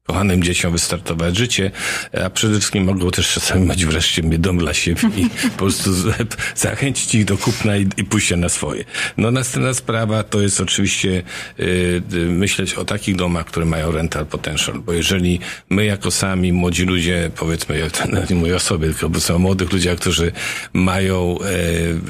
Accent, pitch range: native, 85-100 Hz